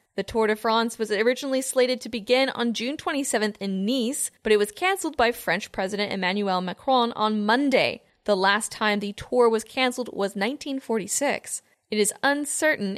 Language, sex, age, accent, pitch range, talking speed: English, female, 10-29, American, 205-255 Hz, 175 wpm